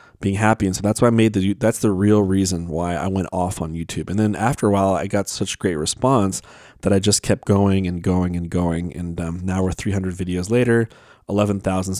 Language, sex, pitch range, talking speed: English, male, 95-110 Hz, 240 wpm